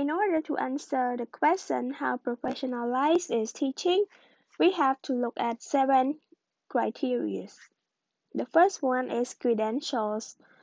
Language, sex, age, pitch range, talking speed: English, female, 20-39, 240-320 Hz, 125 wpm